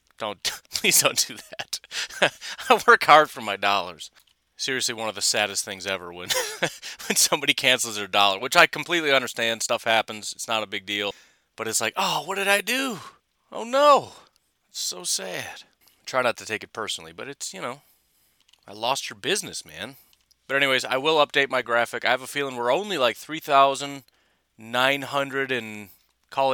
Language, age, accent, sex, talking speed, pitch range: English, 30-49, American, male, 190 wpm, 115-170 Hz